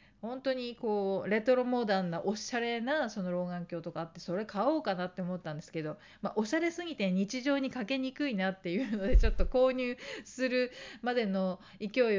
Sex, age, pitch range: female, 40-59, 190-255 Hz